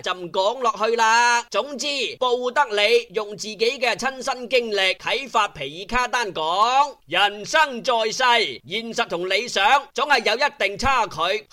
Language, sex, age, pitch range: Chinese, male, 30-49, 200-275 Hz